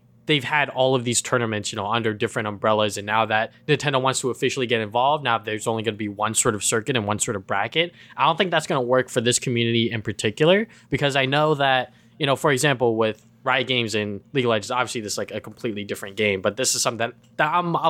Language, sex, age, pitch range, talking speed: English, male, 20-39, 110-130 Hz, 260 wpm